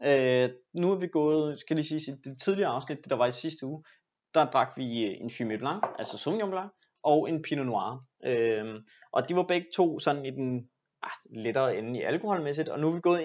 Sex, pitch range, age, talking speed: male, 125-165 Hz, 20-39, 210 wpm